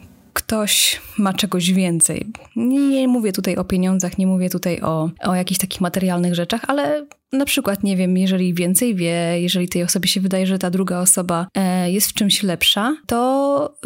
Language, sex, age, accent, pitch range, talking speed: Polish, female, 20-39, native, 180-210 Hz, 175 wpm